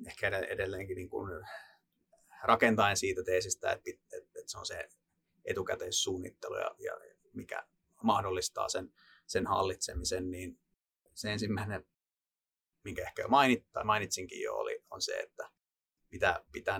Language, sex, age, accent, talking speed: Finnish, male, 30-49, native, 110 wpm